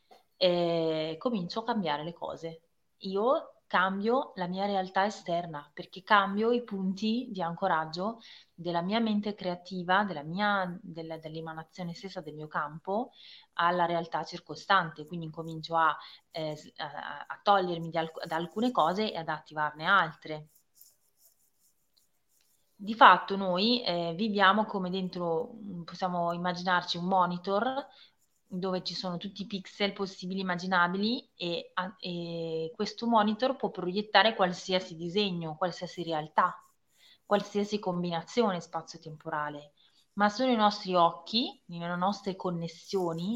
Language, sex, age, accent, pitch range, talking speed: Italian, female, 20-39, native, 170-205 Hz, 115 wpm